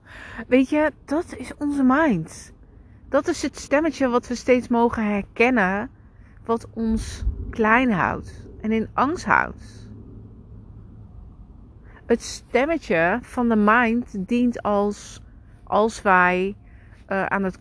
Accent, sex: Dutch, female